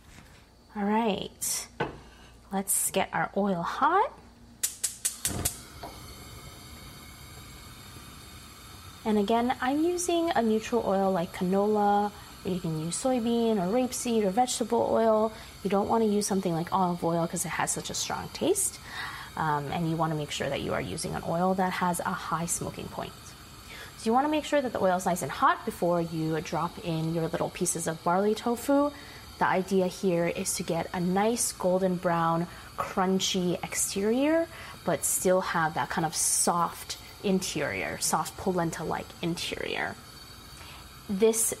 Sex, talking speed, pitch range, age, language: female, 150 wpm, 170-225 Hz, 20-39, English